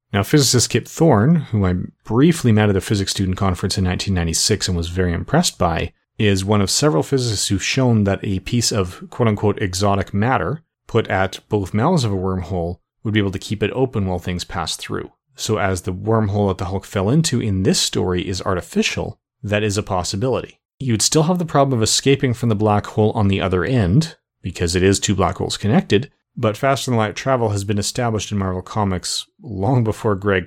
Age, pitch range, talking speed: 30-49, 95-115 Hz, 210 wpm